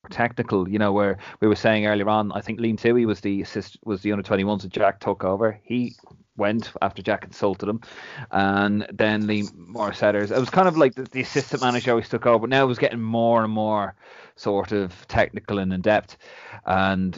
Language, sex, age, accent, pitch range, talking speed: English, male, 30-49, Irish, 100-120 Hz, 215 wpm